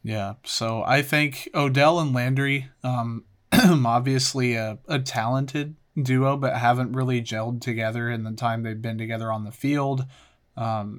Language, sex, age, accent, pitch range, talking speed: English, male, 30-49, American, 120-140 Hz, 155 wpm